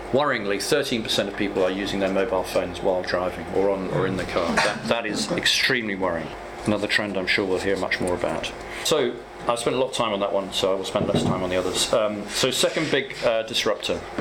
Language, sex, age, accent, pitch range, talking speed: English, male, 40-59, British, 100-115 Hz, 230 wpm